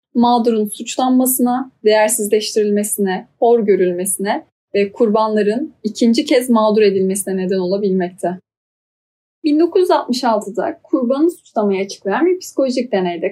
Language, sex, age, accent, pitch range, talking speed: Turkish, female, 10-29, native, 210-290 Hz, 90 wpm